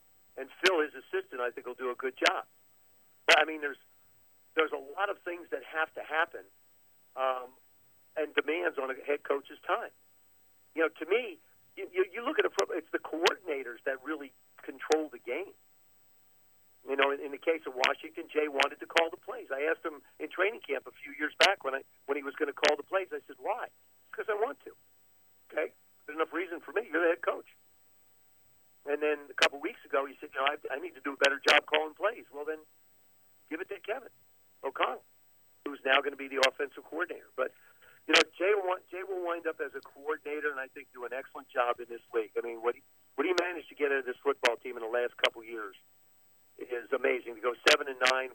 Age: 50-69